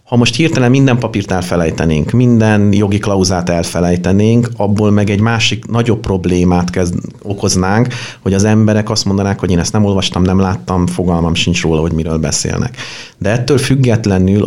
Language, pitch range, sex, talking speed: Hungarian, 90-110 Hz, male, 160 wpm